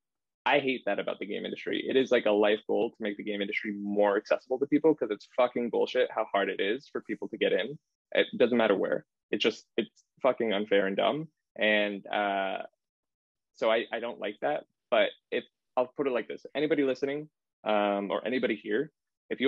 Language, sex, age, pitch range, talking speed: English, male, 20-39, 105-130 Hz, 215 wpm